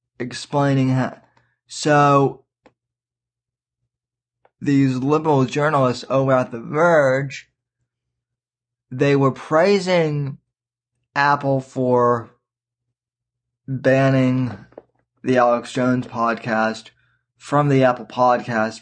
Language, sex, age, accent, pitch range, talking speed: English, male, 20-39, American, 120-140 Hz, 75 wpm